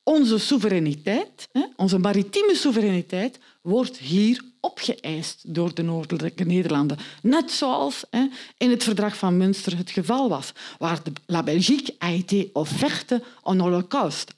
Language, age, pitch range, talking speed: Dutch, 50-69, 170-240 Hz, 130 wpm